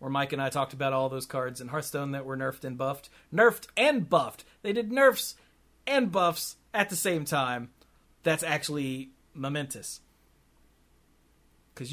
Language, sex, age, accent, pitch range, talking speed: English, male, 30-49, American, 135-180 Hz, 160 wpm